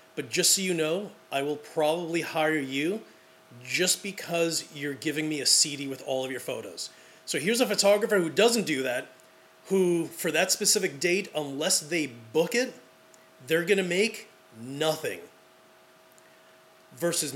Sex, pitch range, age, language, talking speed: male, 130-175 Hz, 30-49, English, 150 wpm